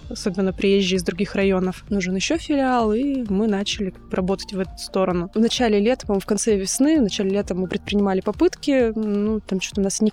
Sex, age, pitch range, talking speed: female, 20-39, 195-220 Hz, 200 wpm